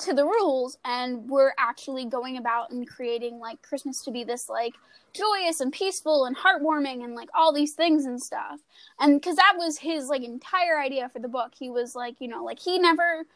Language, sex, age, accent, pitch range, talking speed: English, female, 10-29, American, 250-325 Hz, 210 wpm